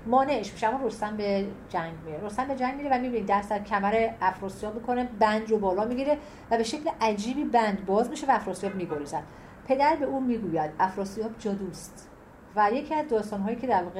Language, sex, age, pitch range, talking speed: Persian, female, 40-59, 175-230 Hz, 195 wpm